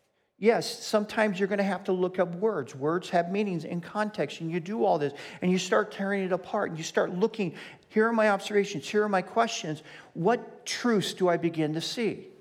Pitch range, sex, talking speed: 165-220 Hz, male, 220 wpm